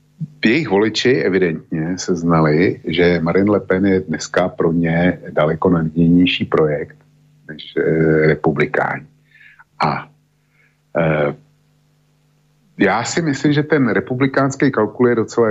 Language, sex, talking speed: Slovak, male, 110 wpm